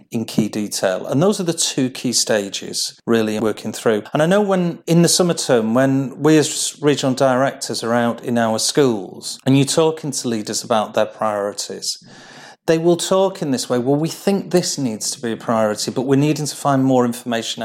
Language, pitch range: English, 115-150 Hz